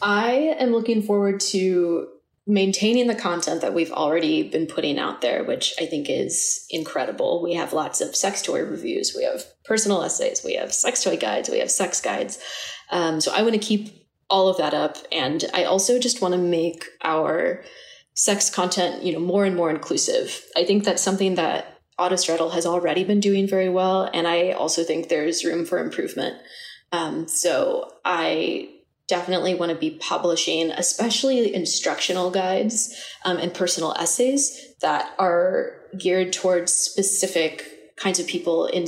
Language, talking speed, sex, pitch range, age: English, 170 wpm, female, 175-245 Hz, 20-39